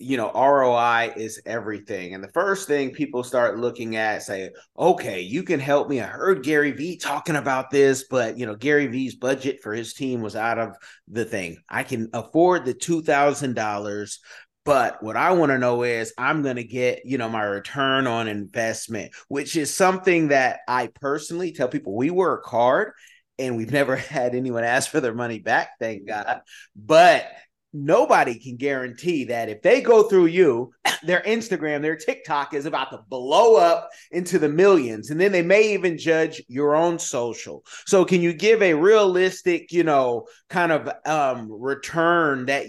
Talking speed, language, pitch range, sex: 180 wpm, English, 125-170 Hz, male